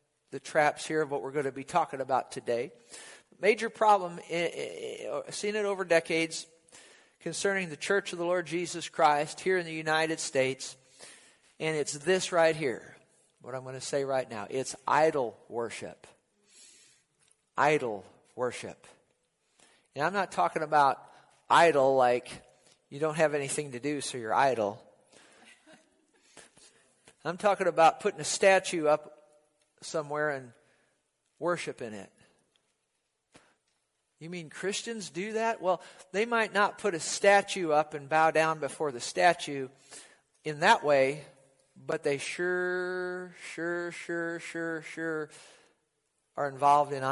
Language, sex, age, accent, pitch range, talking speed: English, male, 50-69, American, 145-180 Hz, 140 wpm